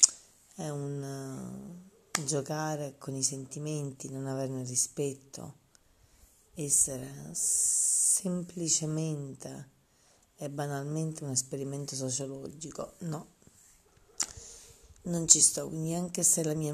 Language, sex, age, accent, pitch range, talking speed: Italian, female, 30-49, native, 135-160 Hz, 90 wpm